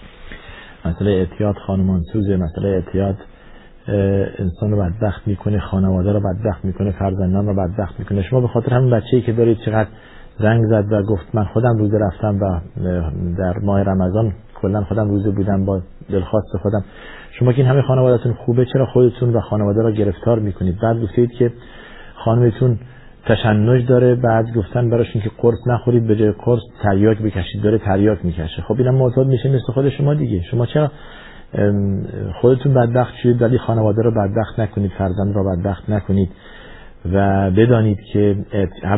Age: 50-69